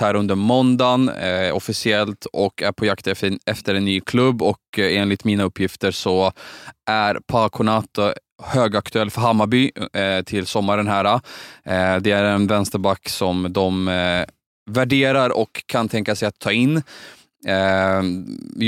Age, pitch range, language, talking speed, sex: 20-39, 95-115 Hz, Swedish, 155 wpm, male